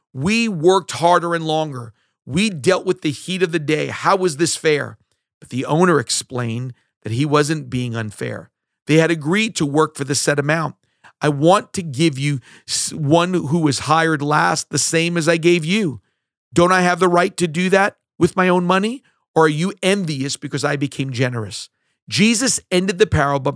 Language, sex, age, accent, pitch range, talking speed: English, male, 40-59, American, 135-175 Hz, 190 wpm